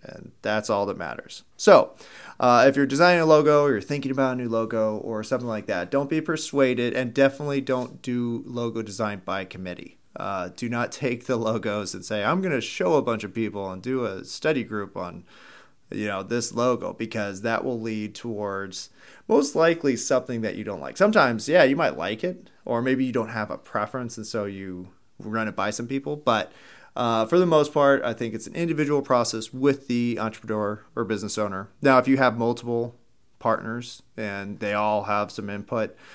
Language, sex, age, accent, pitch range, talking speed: English, male, 30-49, American, 105-130 Hz, 205 wpm